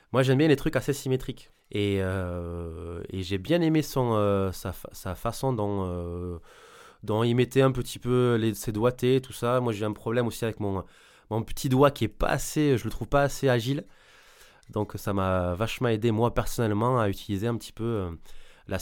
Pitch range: 95-125 Hz